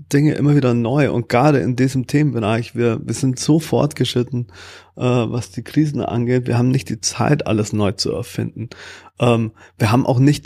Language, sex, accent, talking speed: German, male, German, 190 wpm